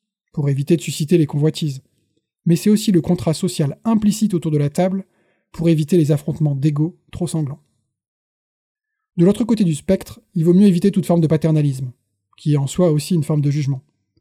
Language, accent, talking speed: French, French, 195 wpm